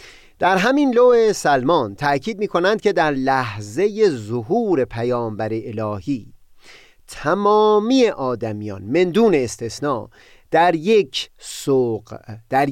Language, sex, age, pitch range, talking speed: Persian, male, 30-49, 125-195 Hz, 100 wpm